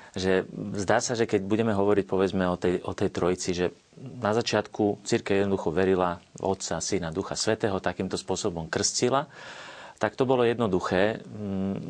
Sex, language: male, Slovak